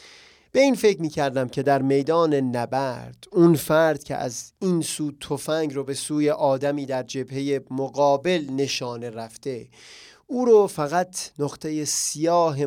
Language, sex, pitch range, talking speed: Persian, male, 140-170 Hz, 140 wpm